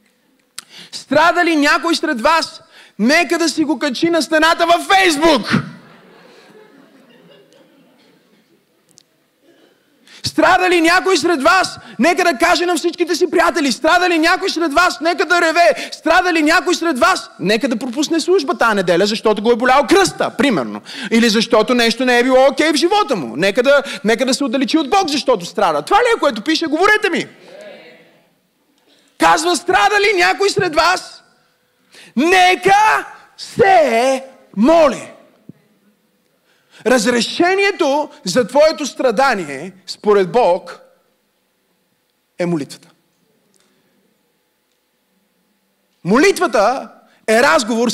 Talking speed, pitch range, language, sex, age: 125 wpm, 235-340 Hz, Bulgarian, male, 30-49